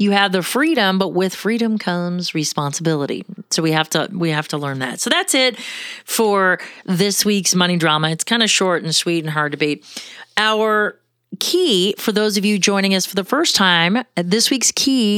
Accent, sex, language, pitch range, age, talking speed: American, female, English, 180-225 Hz, 40-59, 200 wpm